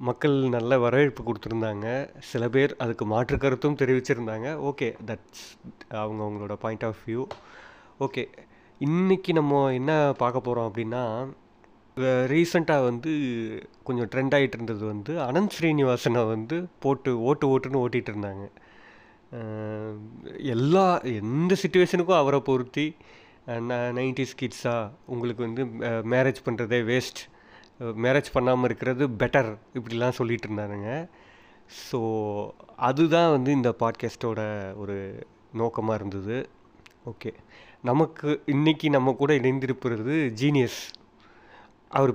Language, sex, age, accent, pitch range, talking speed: Tamil, male, 30-49, native, 115-140 Hz, 105 wpm